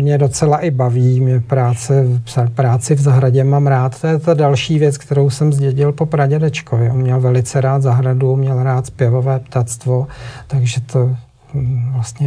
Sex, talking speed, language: male, 160 wpm, Czech